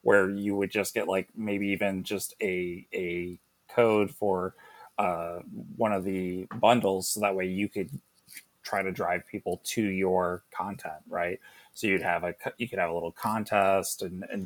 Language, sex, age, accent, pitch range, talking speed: English, male, 30-49, American, 90-105 Hz, 180 wpm